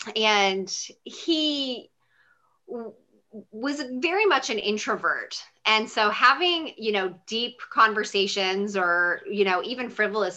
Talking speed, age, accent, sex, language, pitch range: 110 wpm, 20-39, American, female, English, 185-245 Hz